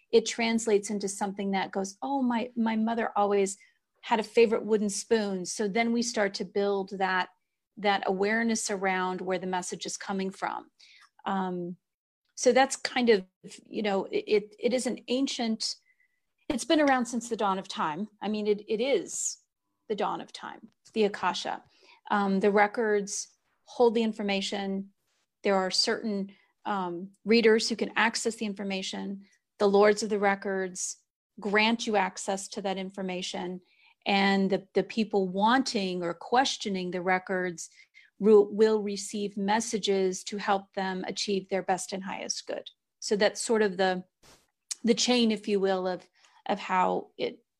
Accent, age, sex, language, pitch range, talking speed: American, 40-59, female, English, 195-230 Hz, 160 wpm